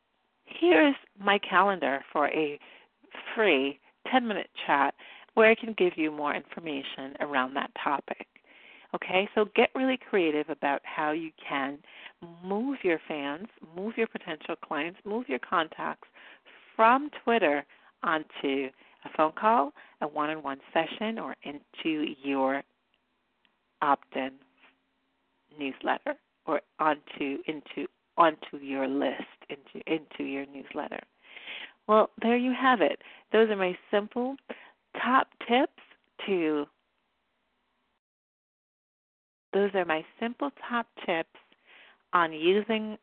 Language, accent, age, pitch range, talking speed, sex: English, American, 50-69, 150-230 Hz, 115 wpm, female